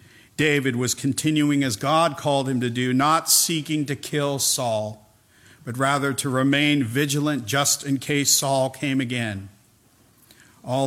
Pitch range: 115-140 Hz